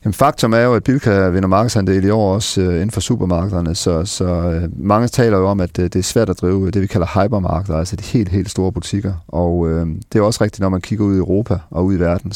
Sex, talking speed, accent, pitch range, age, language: male, 260 wpm, native, 90-110 Hz, 40-59, Danish